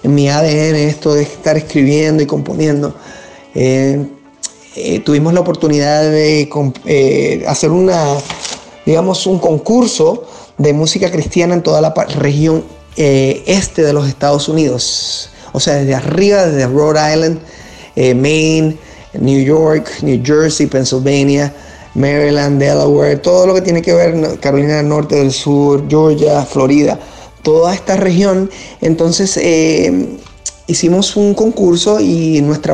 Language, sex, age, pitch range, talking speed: Spanish, male, 30-49, 145-170 Hz, 135 wpm